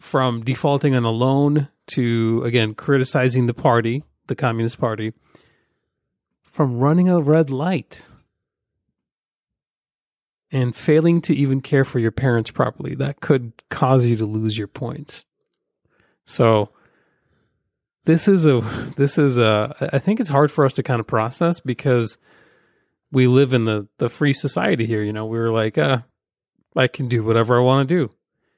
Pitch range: 115-140 Hz